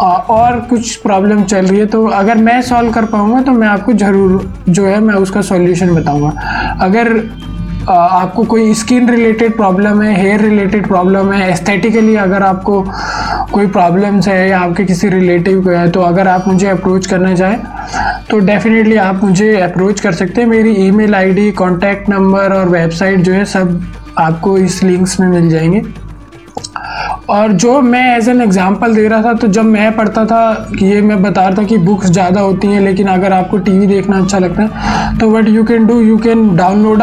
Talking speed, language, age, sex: 190 wpm, Hindi, 20-39, male